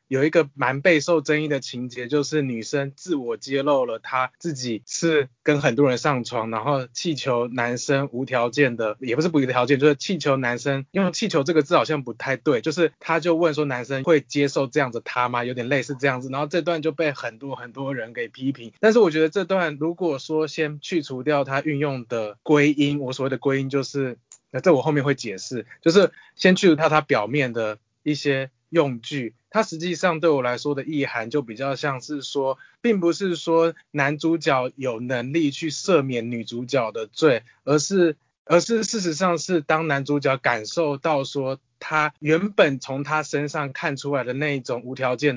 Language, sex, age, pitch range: Chinese, male, 20-39, 130-160 Hz